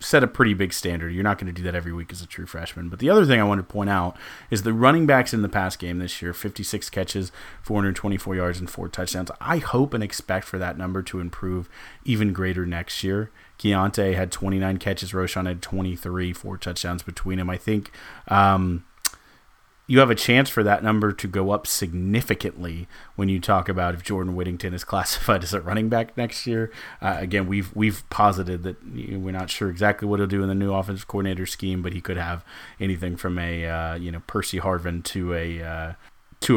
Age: 30-49